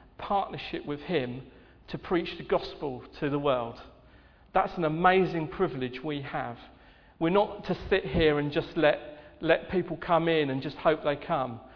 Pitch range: 145-175 Hz